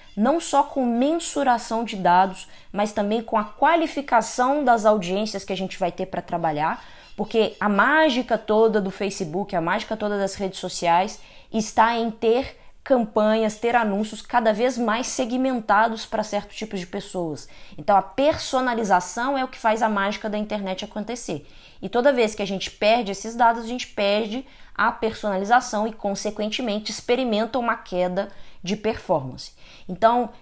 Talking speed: 160 wpm